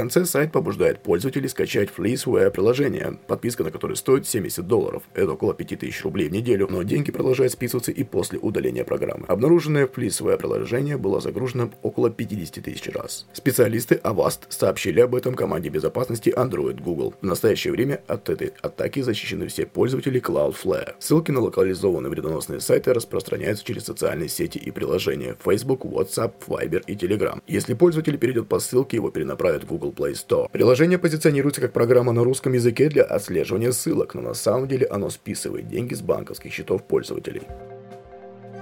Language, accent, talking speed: Russian, native, 160 wpm